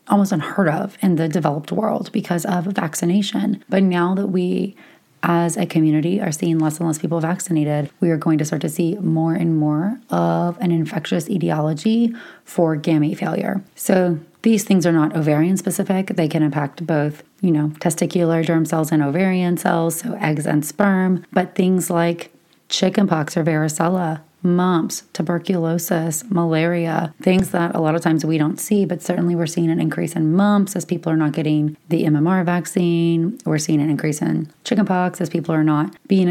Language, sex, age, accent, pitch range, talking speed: English, female, 30-49, American, 155-180 Hz, 180 wpm